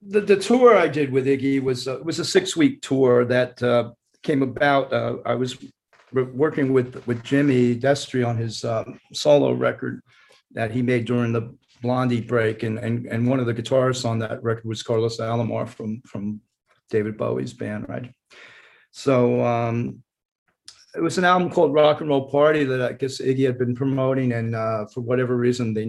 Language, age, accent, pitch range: English, 40-59, American, 120-145 Hz